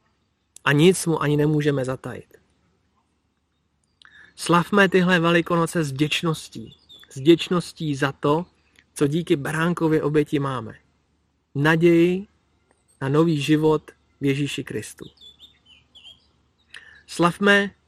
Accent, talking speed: native, 95 wpm